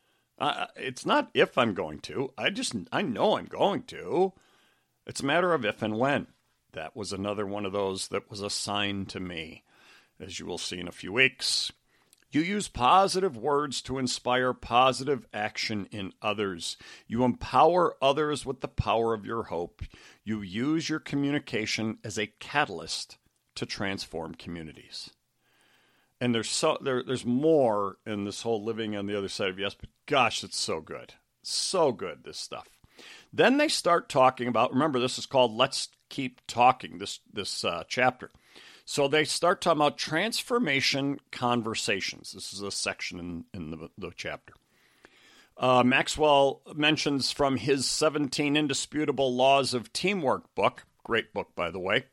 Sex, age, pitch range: male, 50-69, 105-145 Hz